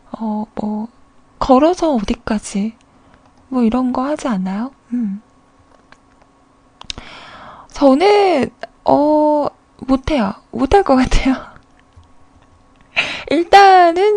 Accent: native